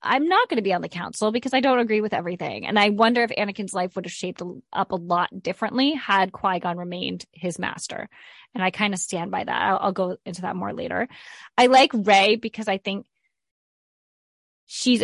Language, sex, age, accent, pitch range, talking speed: English, female, 20-39, American, 185-225 Hz, 210 wpm